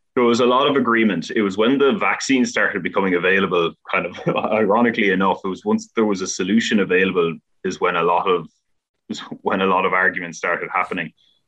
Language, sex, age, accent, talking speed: English, male, 20-39, Irish, 205 wpm